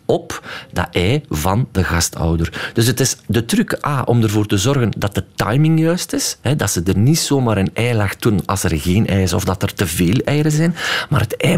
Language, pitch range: Dutch, 100-145 Hz